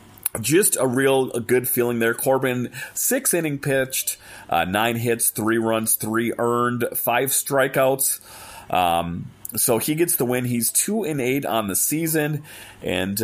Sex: male